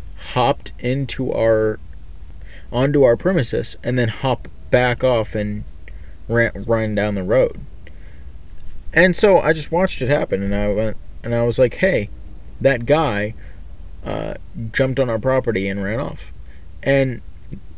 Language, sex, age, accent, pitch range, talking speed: English, male, 20-39, American, 75-125 Hz, 145 wpm